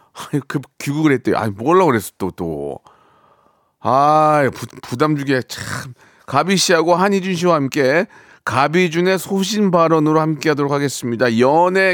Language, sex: Korean, male